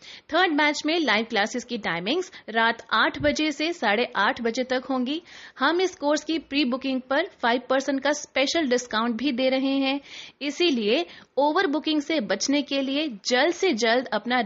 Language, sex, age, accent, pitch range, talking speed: Hindi, female, 30-49, native, 230-295 Hz, 175 wpm